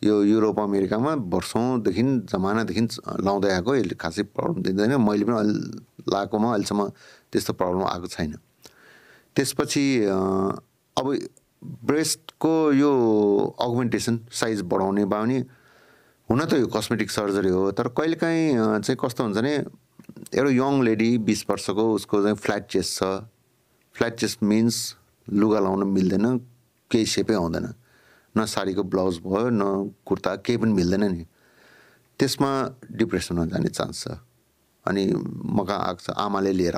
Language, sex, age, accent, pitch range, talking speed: English, male, 50-69, Indian, 100-120 Hz, 75 wpm